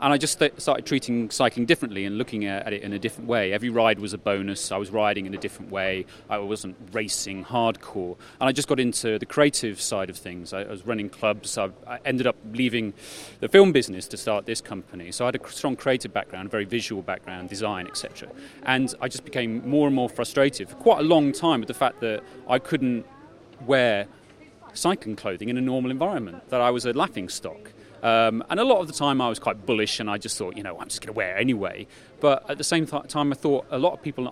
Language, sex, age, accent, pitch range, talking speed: English, male, 30-49, British, 105-130 Hz, 235 wpm